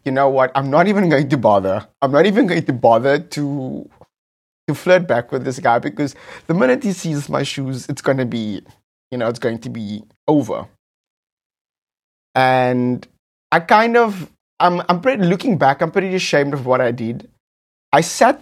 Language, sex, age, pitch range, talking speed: English, male, 20-39, 130-175 Hz, 185 wpm